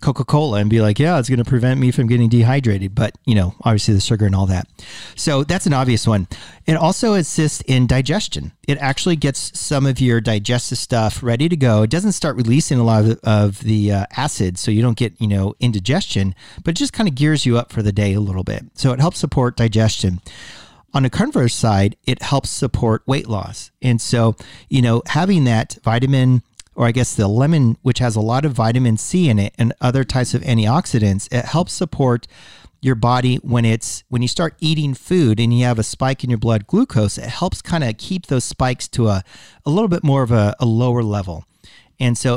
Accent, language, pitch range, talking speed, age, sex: American, English, 110-135 Hz, 220 wpm, 40-59, male